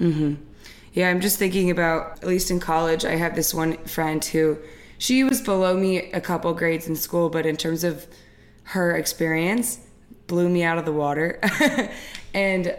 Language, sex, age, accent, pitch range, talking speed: English, female, 20-39, American, 160-190 Hz, 180 wpm